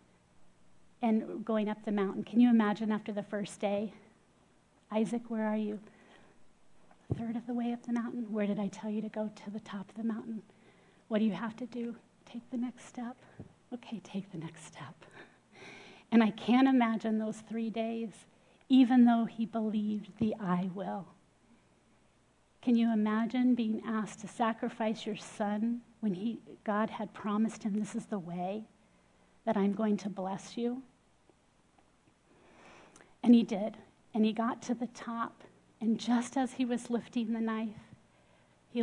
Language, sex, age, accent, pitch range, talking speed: English, female, 40-59, American, 200-230 Hz, 170 wpm